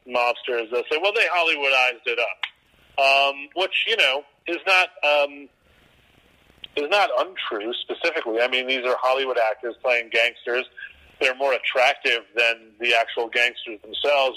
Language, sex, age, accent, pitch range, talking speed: English, male, 40-59, American, 120-155 Hz, 145 wpm